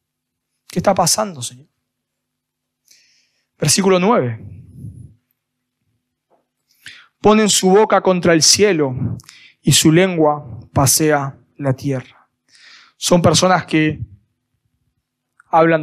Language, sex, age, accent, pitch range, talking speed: Spanish, male, 20-39, Argentinian, 140-195 Hz, 85 wpm